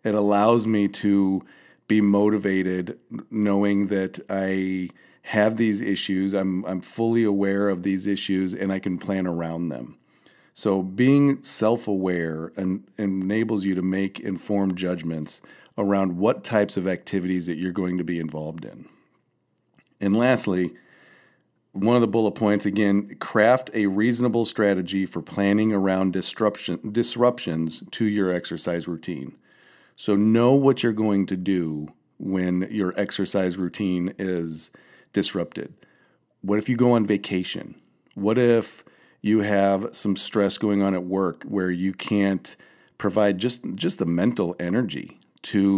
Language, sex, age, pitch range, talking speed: English, male, 40-59, 90-105 Hz, 140 wpm